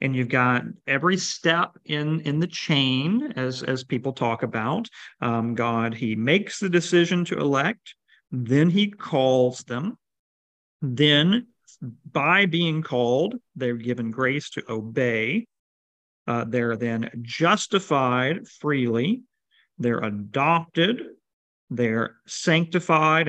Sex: male